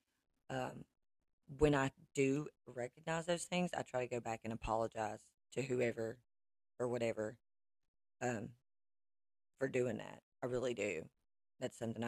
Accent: American